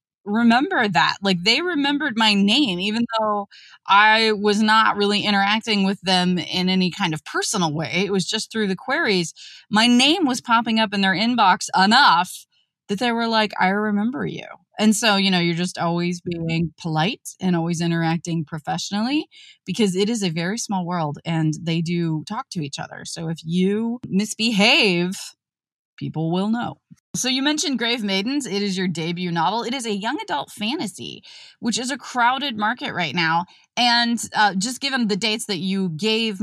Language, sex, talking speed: English, female, 180 wpm